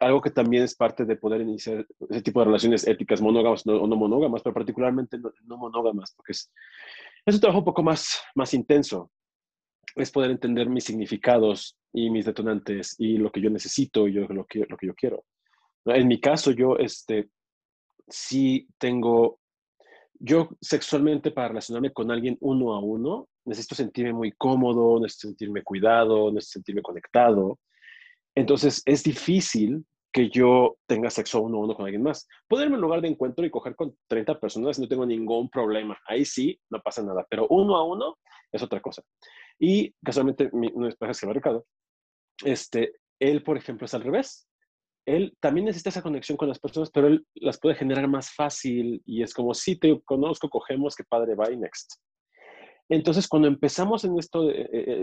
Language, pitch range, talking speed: Spanish, 115-150 Hz, 180 wpm